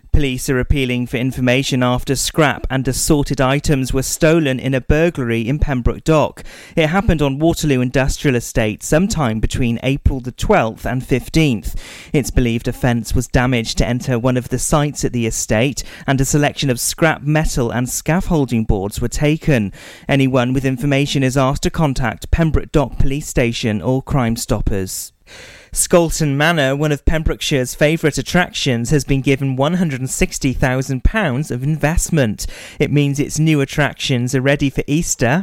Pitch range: 125-150 Hz